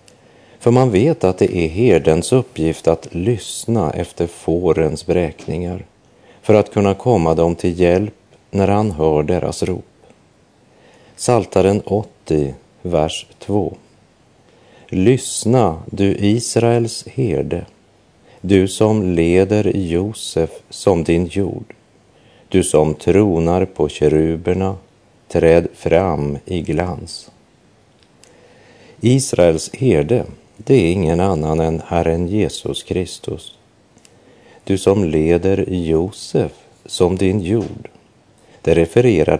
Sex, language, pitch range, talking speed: male, Dutch, 80-105 Hz, 105 wpm